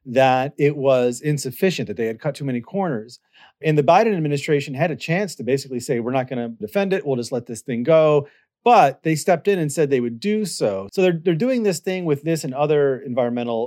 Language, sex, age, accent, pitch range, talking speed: English, male, 40-59, American, 120-155 Hz, 235 wpm